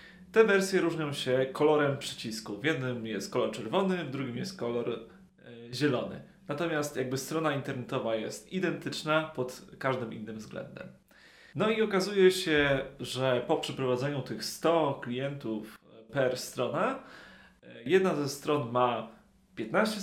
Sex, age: male, 30-49